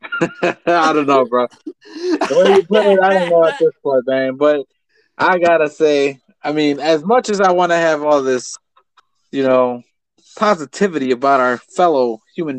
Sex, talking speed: male, 185 wpm